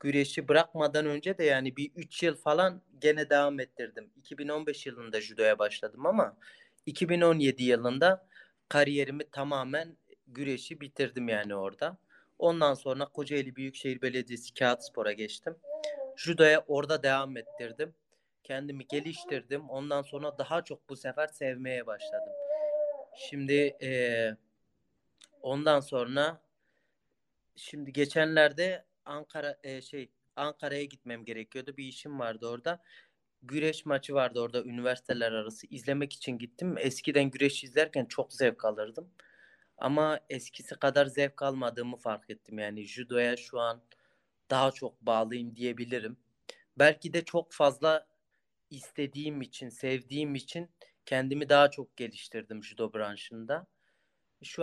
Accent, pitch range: native, 125-155 Hz